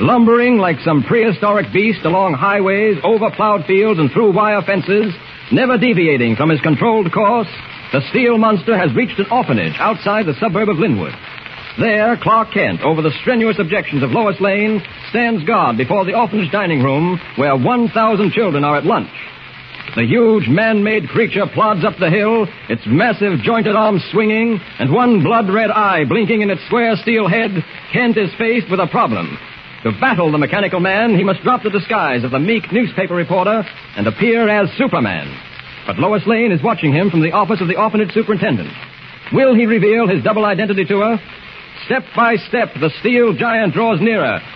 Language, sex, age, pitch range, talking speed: English, male, 60-79, 175-225 Hz, 180 wpm